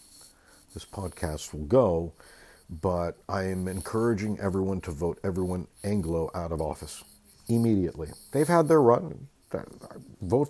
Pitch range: 95-130 Hz